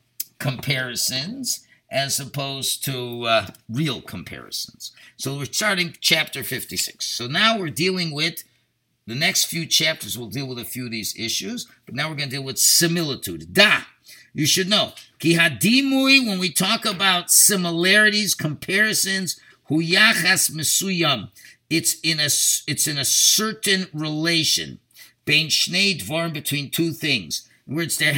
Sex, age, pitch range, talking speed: male, 50-69, 145-200 Hz, 130 wpm